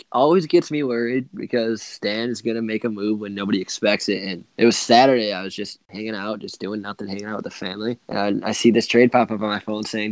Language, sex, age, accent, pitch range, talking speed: English, male, 20-39, American, 105-120 Hz, 255 wpm